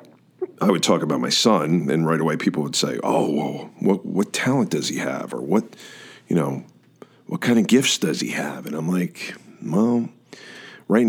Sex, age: male, 40-59